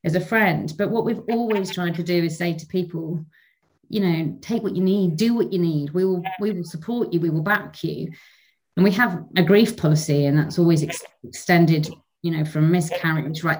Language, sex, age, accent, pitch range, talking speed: English, female, 30-49, British, 155-185 Hz, 220 wpm